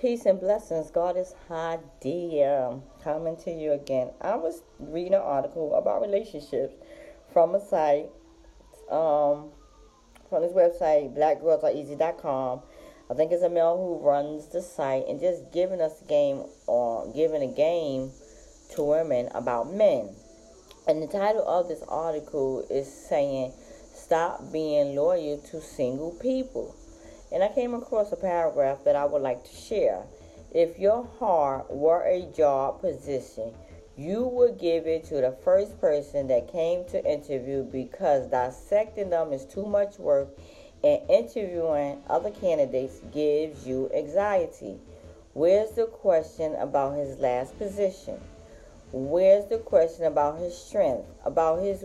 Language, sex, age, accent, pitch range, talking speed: English, female, 30-49, American, 140-195 Hz, 140 wpm